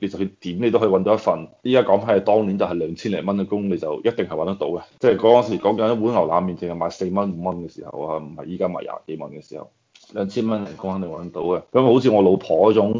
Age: 20-39